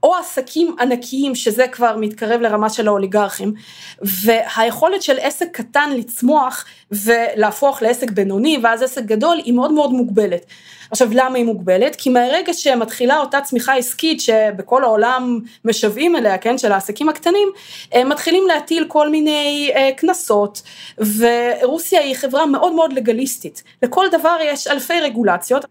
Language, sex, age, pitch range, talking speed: Hebrew, female, 20-39, 215-275 Hz, 140 wpm